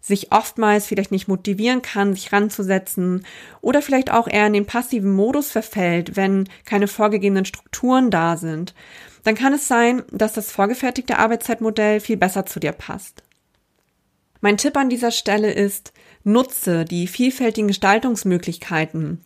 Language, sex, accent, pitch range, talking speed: German, female, German, 185-225 Hz, 145 wpm